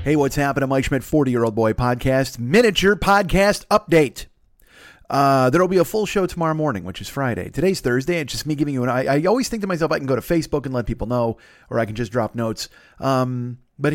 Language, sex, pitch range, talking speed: English, male, 120-170 Hz, 230 wpm